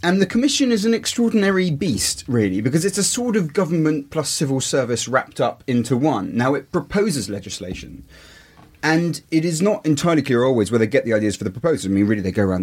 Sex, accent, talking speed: male, British, 220 wpm